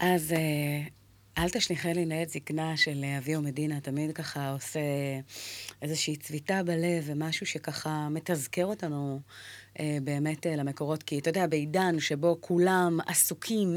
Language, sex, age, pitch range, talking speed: Hebrew, female, 30-49, 155-195 Hz, 125 wpm